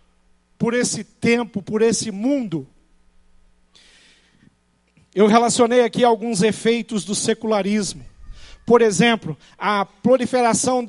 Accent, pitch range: Brazilian, 180-245 Hz